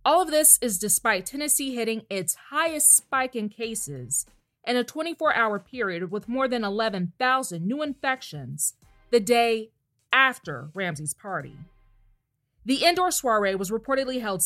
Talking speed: 135 wpm